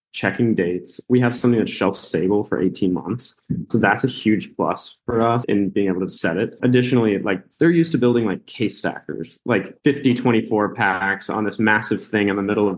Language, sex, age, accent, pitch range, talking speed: English, male, 20-39, American, 95-115 Hz, 205 wpm